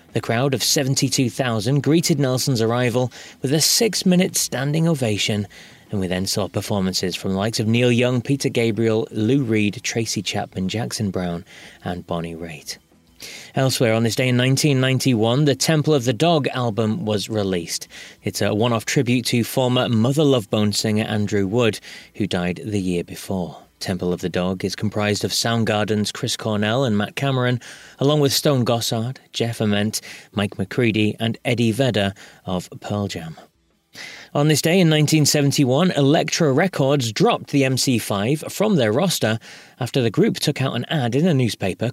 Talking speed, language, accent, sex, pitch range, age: 165 wpm, English, British, male, 105-145 Hz, 30-49